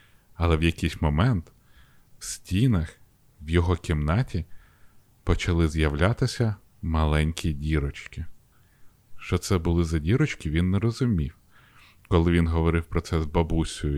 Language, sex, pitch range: Ukrainian, male, 80-110 Hz